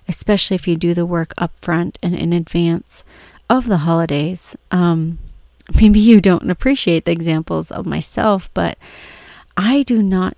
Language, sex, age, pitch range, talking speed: English, female, 30-49, 170-185 Hz, 155 wpm